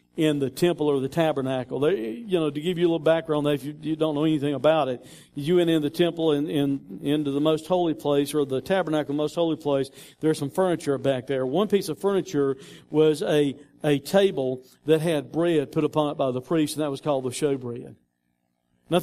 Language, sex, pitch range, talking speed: English, male, 140-230 Hz, 220 wpm